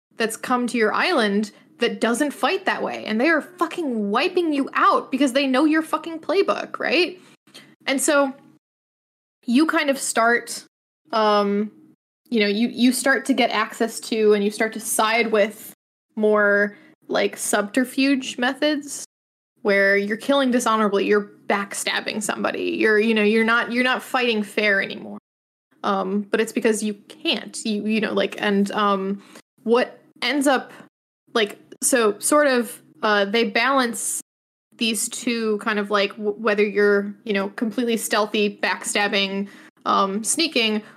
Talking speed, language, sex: 150 wpm, English, female